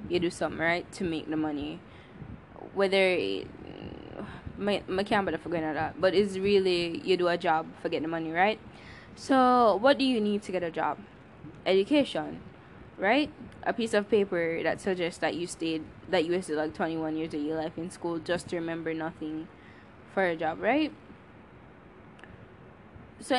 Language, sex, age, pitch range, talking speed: English, female, 10-29, 165-200 Hz, 165 wpm